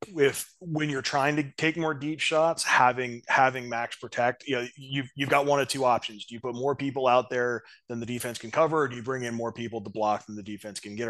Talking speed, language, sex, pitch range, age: 260 wpm, English, male, 110-135 Hz, 20-39